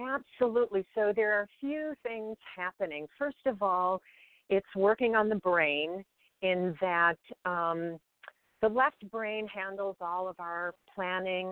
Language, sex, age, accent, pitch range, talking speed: English, female, 50-69, American, 175-220 Hz, 140 wpm